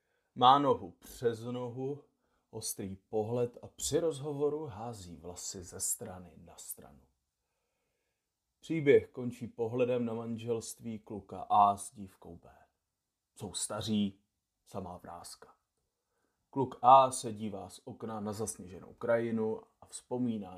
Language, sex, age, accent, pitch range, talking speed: Czech, male, 30-49, native, 100-130 Hz, 115 wpm